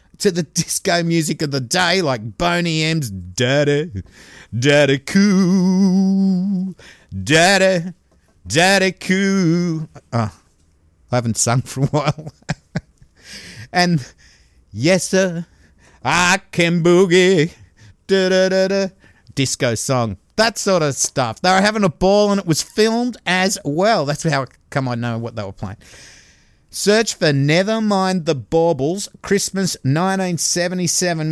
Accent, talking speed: Australian, 125 wpm